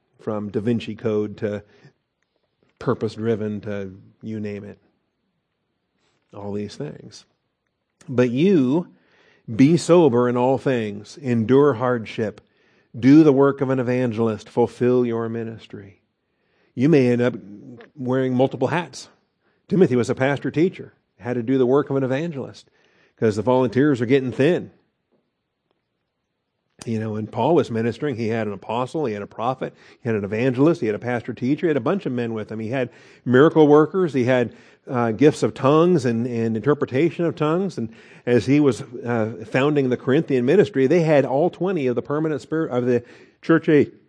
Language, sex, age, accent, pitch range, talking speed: English, male, 50-69, American, 115-145 Hz, 170 wpm